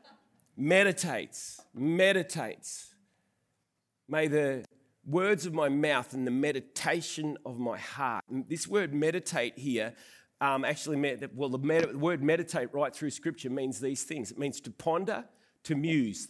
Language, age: English, 40-59